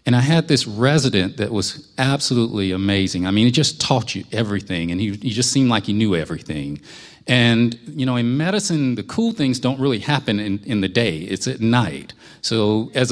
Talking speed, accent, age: 205 wpm, American, 40-59